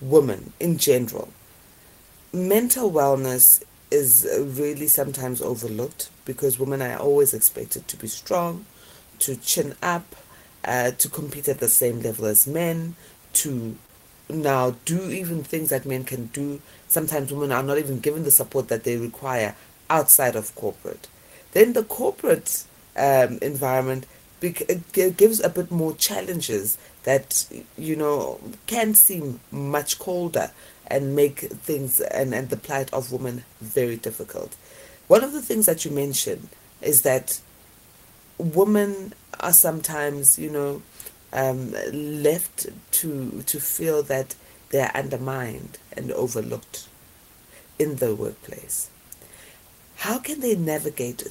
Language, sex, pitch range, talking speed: English, female, 130-170 Hz, 130 wpm